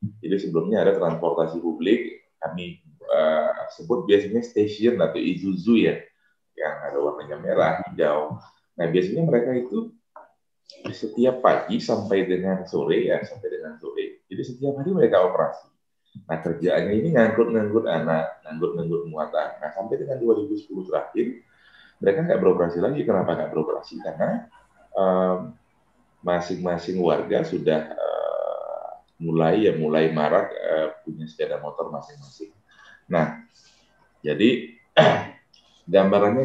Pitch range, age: 80-120 Hz, 30-49